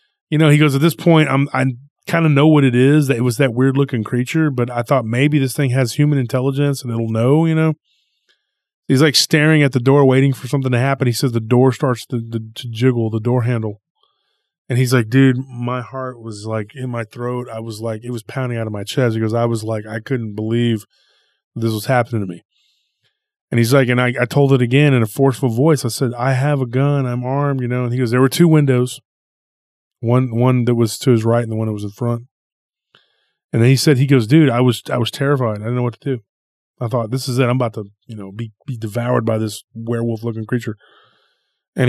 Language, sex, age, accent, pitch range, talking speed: English, male, 30-49, American, 115-140 Hz, 250 wpm